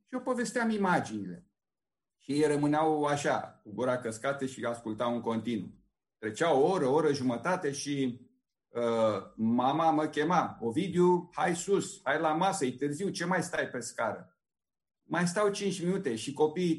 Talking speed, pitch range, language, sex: 160 wpm, 130-190 Hz, Romanian, male